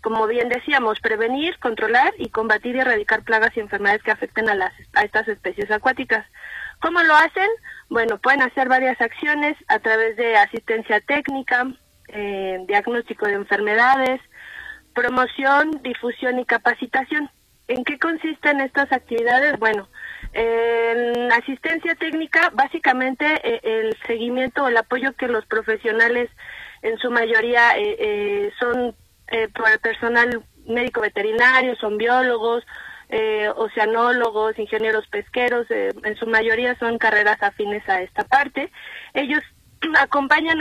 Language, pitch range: Spanish, 220-285 Hz